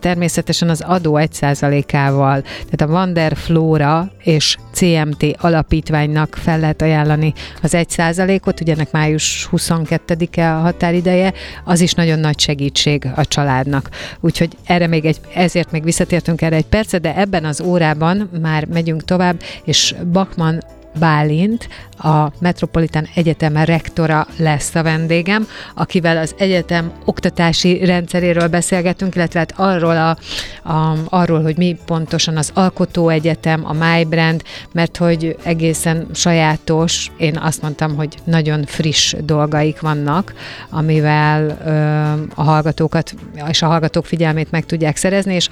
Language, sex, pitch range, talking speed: Hungarian, female, 155-170 Hz, 130 wpm